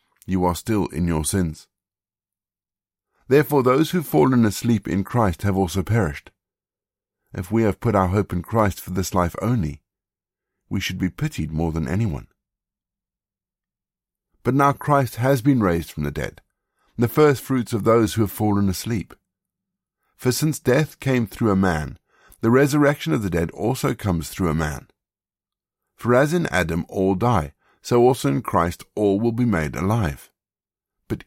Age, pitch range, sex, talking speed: 50-69, 90-120 Hz, male, 165 wpm